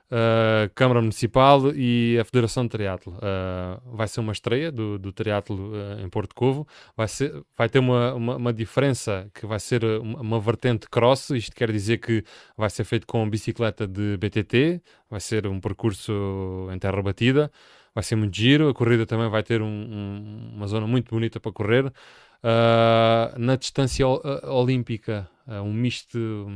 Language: Portuguese